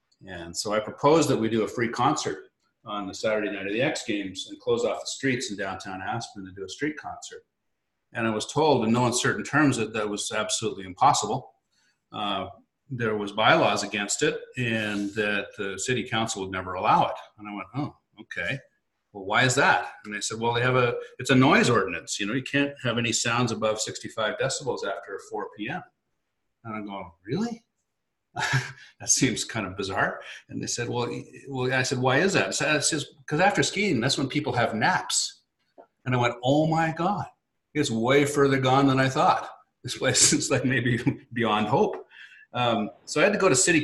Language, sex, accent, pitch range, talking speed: English, male, American, 105-140 Hz, 200 wpm